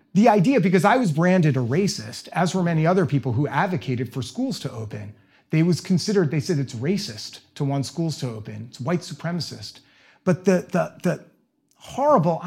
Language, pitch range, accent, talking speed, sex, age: English, 125-175 Hz, American, 190 wpm, male, 30-49